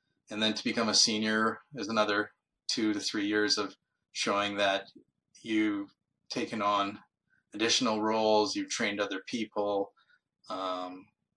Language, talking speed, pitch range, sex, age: English, 130 wpm, 100-115 Hz, male, 20-39